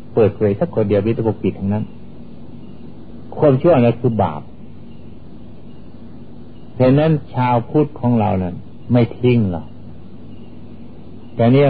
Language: Thai